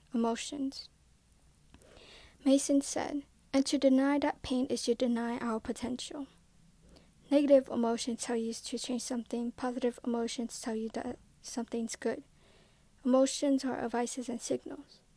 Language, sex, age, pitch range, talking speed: English, female, 10-29, 235-265 Hz, 125 wpm